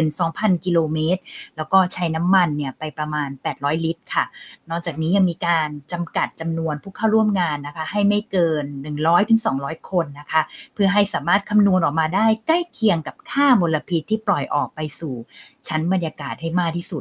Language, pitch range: Thai, 155-205 Hz